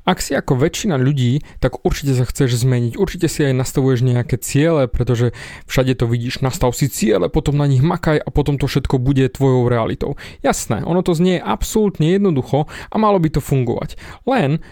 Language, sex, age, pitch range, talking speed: Slovak, male, 30-49, 135-180 Hz, 190 wpm